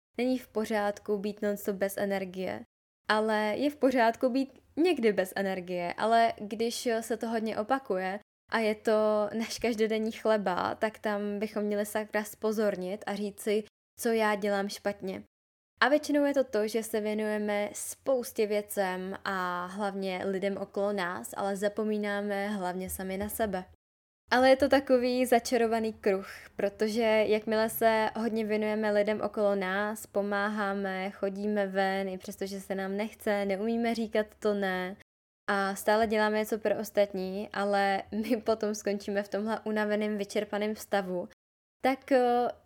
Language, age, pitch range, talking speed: Czech, 10-29, 195-225 Hz, 145 wpm